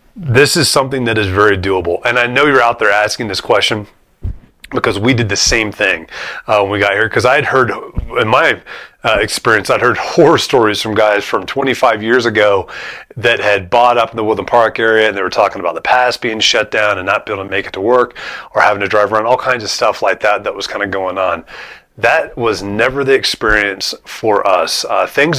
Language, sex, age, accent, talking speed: English, male, 30-49, American, 235 wpm